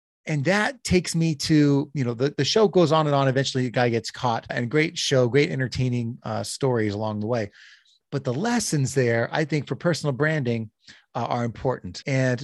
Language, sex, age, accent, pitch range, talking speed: English, male, 30-49, American, 120-150 Hz, 205 wpm